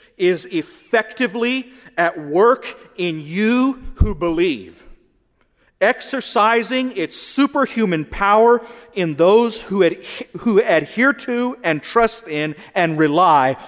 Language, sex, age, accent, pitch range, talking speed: English, male, 40-59, American, 175-255 Hz, 100 wpm